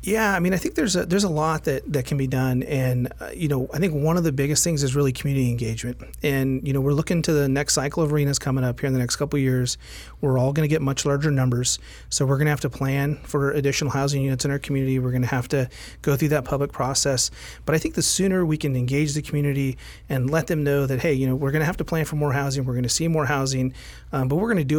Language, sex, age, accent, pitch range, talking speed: English, male, 30-49, American, 130-150 Hz, 295 wpm